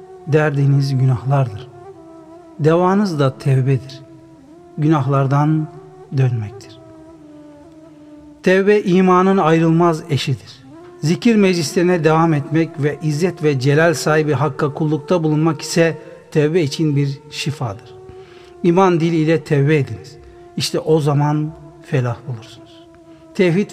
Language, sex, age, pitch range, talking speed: Turkish, male, 60-79, 145-185 Hz, 95 wpm